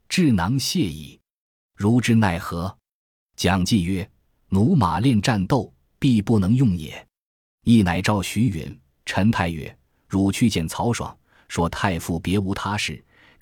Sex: male